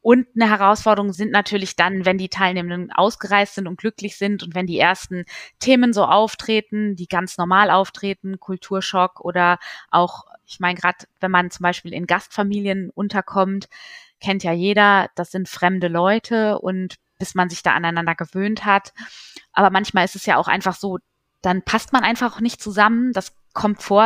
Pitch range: 180-210 Hz